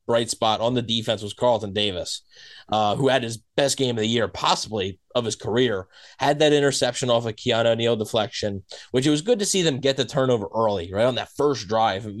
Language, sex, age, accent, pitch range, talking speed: English, male, 20-39, American, 110-135 Hz, 220 wpm